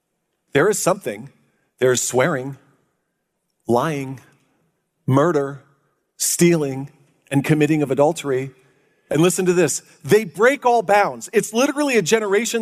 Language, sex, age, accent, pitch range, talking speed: English, male, 40-59, American, 160-220 Hz, 120 wpm